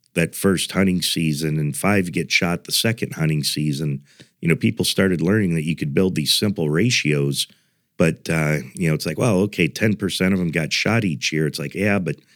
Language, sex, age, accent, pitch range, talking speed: English, male, 50-69, American, 75-90 Hz, 210 wpm